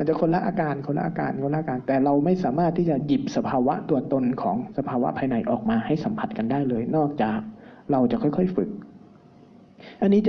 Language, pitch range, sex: Thai, 140-185 Hz, male